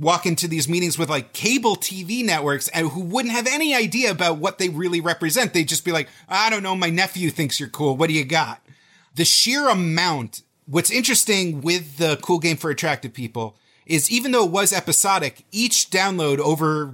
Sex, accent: male, American